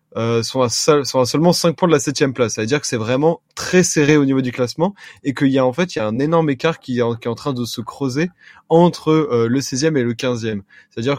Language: French